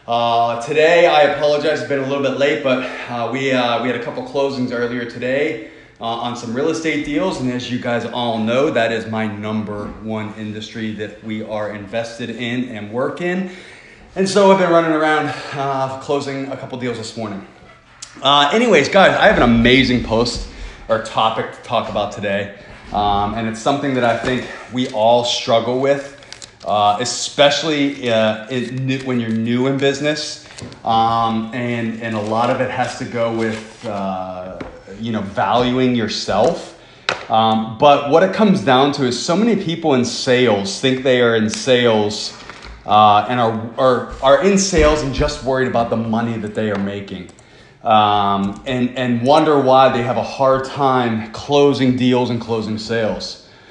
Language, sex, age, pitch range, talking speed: English, male, 30-49, 110-135 Hz, 180 wpm